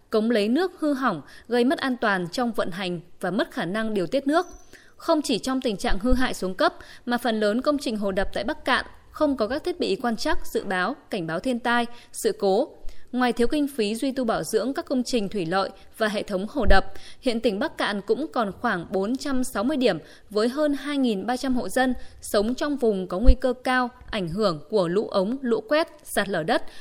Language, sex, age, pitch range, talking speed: Vietnamese, female, 20-39, 205-275 Hz, 230 wpm